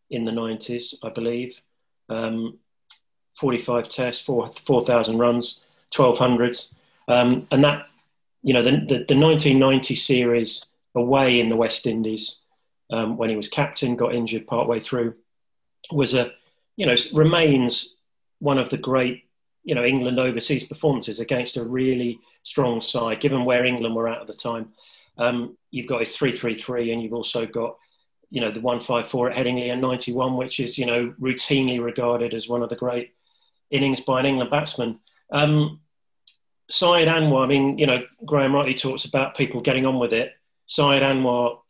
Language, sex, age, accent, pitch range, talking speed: English, male, 30-49, British, 120-135 Hz, 175 wpm